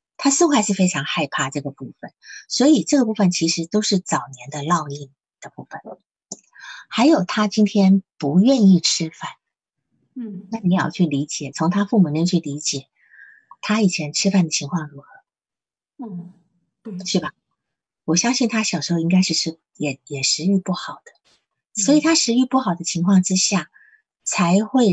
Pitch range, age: 165-240 Hz, 50-69